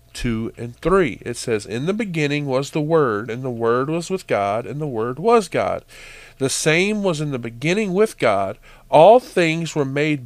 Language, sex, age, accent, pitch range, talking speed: English, male, 40-59, American, 135-205 Hz, 200 wpm